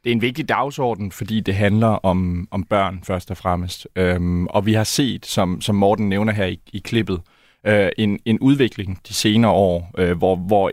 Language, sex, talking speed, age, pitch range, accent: Danish, male, 190 wpm, 30-49, 95-120 Hz, native